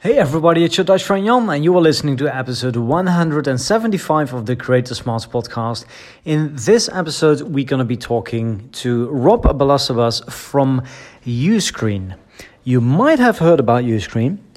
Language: English